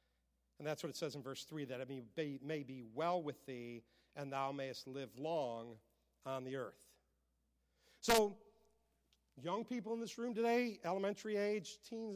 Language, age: English, 50-69